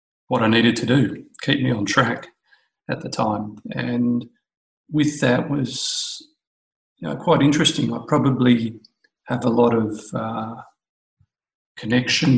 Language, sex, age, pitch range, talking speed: English, male, 50-69, 110-130 Hz, 135 wpm